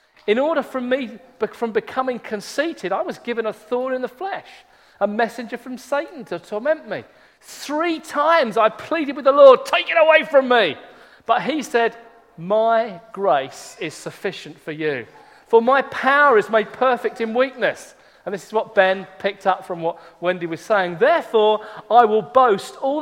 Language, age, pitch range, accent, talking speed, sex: English, 40-59, 210-275 Hz, British, 175 wpm, male